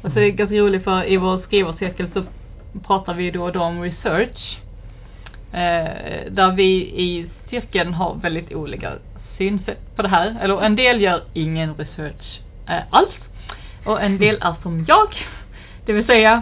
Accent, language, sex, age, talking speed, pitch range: native, Swedish, female, 30-49, 165 wpm, 180-235 Hz